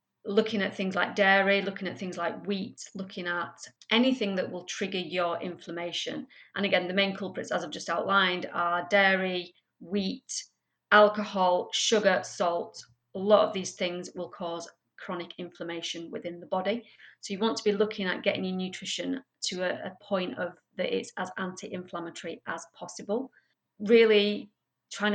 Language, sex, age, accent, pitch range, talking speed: English, female, 30-49, British, 175-210 Hz, 160 wpm